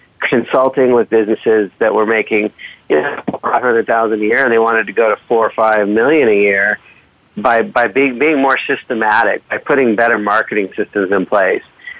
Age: 50-69